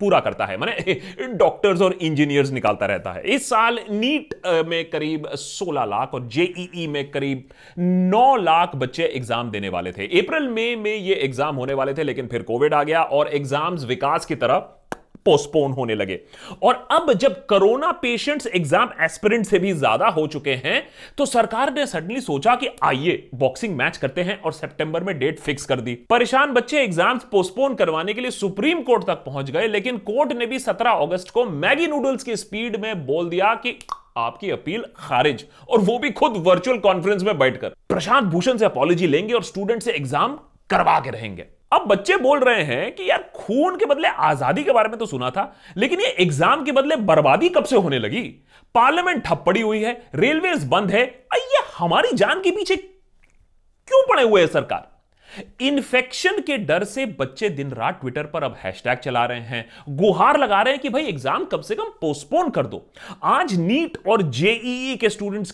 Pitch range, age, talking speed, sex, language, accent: 155-255 Hz, 30-49, 185 wpm, male, Hindi, native